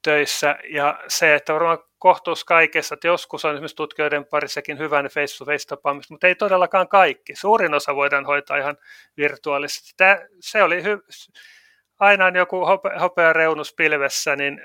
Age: 30-49